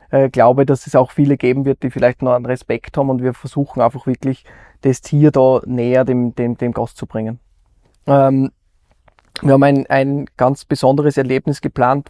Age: 20-39